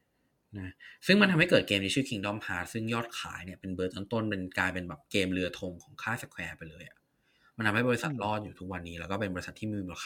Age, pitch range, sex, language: 20-39, 90-115 Hz, male, Thai